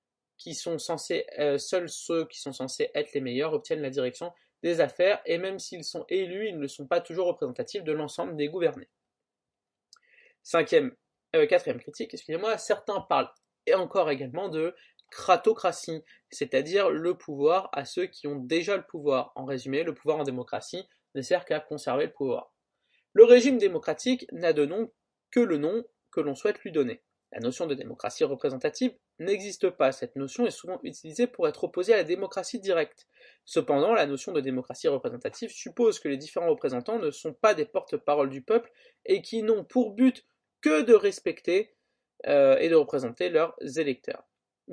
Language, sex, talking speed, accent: French, male, 180 wpm, French